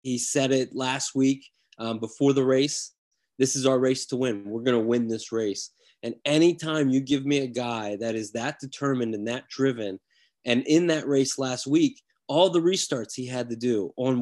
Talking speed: 205 wpm